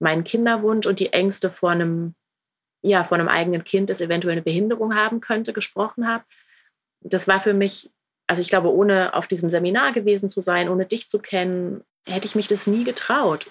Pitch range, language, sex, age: 170-205 Hz, German, female, 30-49